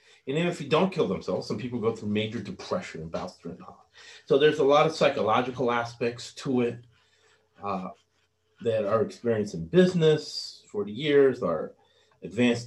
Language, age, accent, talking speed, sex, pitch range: English, 30-49, American, 170 wpm, male, 110-135 Hz